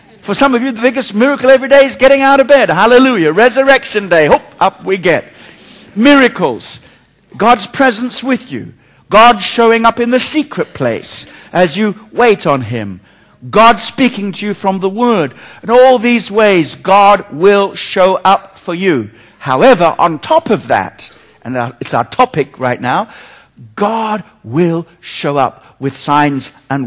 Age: 60-79